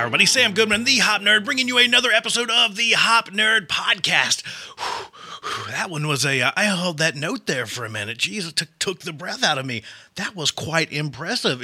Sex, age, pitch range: male, 30-49, 155-215 Hz